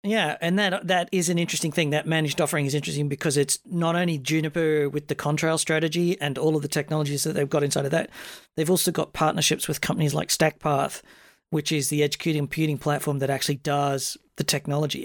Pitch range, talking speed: 150-180 Hz, 205 wpm